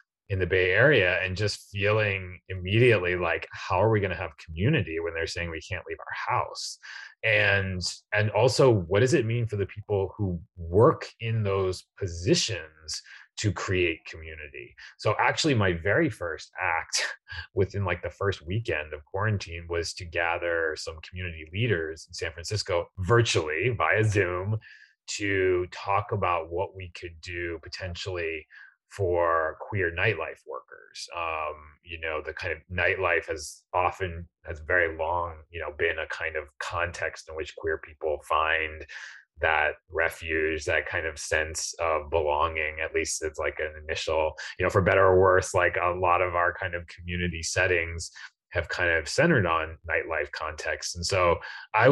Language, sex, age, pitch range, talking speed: English, male, 30-49, 85-100 Hz, 165 wpm